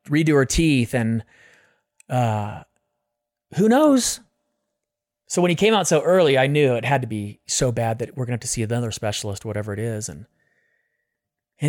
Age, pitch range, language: 30-49, 130-175 Hz, English